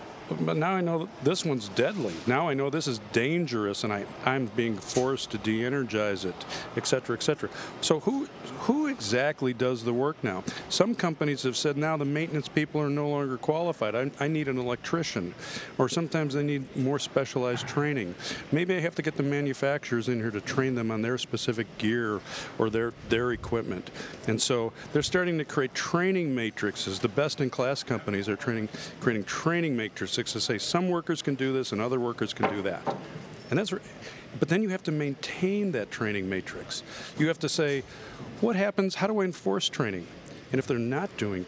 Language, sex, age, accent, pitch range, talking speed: English, male, 50-69, American, 120-155 Hz, 195 wpm